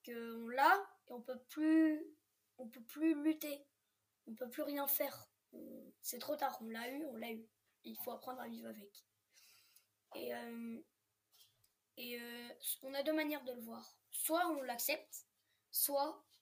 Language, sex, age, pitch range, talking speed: French, female, 20-39, 220-270 Hz, 155 wpm